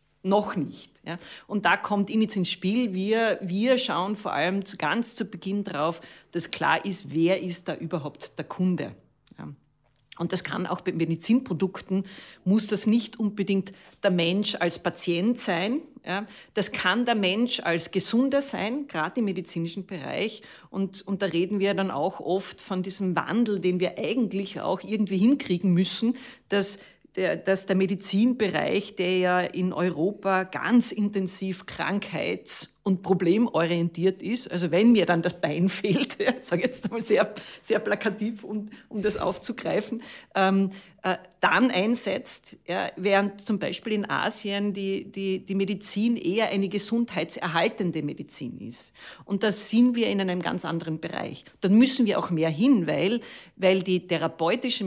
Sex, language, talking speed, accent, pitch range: female, German, 160 wpm, Austrian, 180-215 Hz